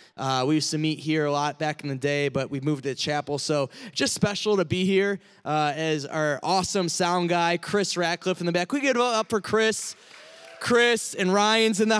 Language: English